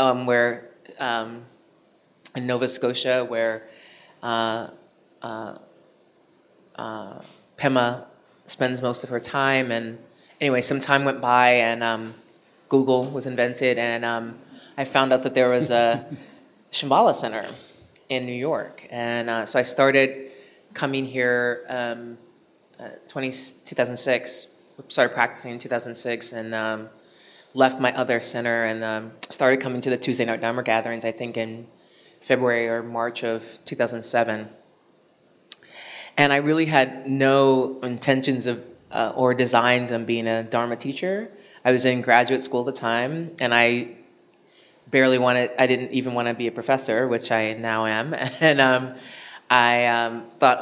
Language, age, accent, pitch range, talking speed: English, 20-39, American, 115-130 Hz, 145 wpm